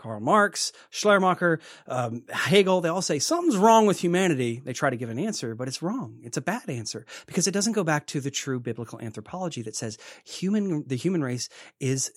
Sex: male